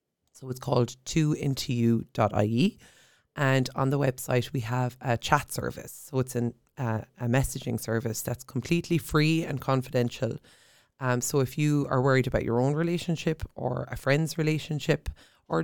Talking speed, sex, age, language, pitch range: 155 wpm, female, 20-39, Portuguese, 120-155 Hz